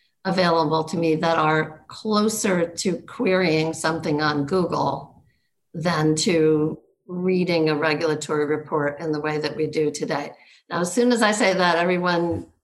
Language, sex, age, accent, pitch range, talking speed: English, female, 50-69, American, 155-185 Hz, 150 wpm